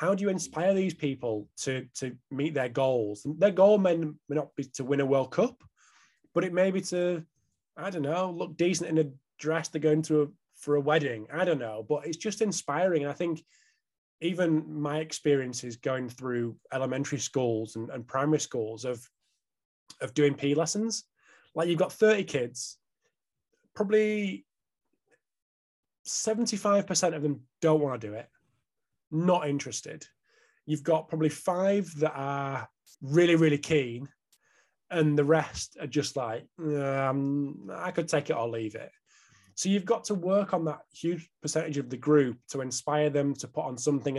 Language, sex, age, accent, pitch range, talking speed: French, male, 20-39, British, 135-180 Hz, 170 wpm